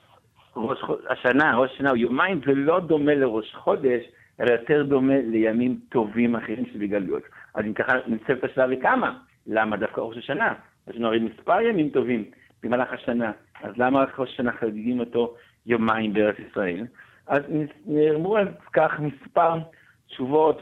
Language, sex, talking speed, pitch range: Hebrew, male, 155 wpm, 120-140 Hz